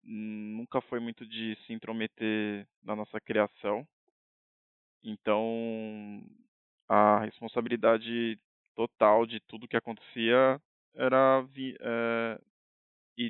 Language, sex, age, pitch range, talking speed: Portuguese, male, 20-39, 110-135 Hz, 90 wpm